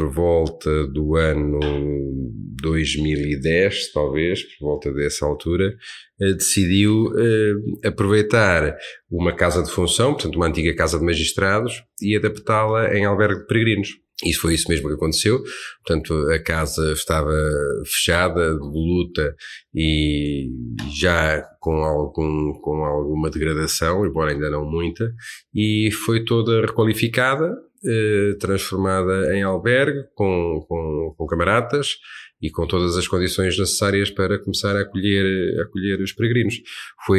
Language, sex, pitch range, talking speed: Portuguese, male, 80-105 Hz, 125 wpm